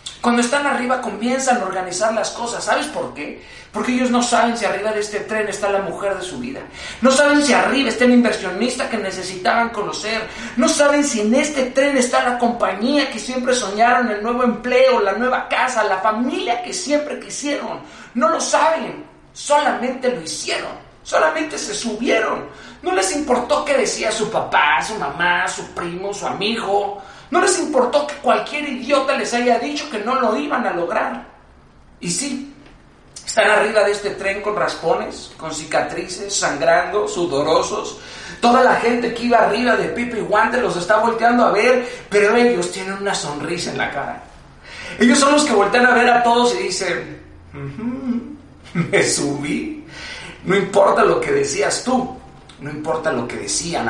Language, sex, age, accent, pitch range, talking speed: Spanish, male, 40-59, Mexican, 200-260 Hz, 175 wpm